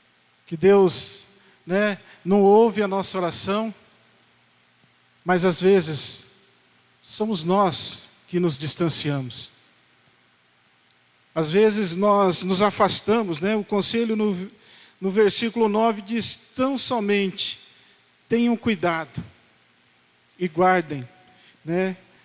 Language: Portuguese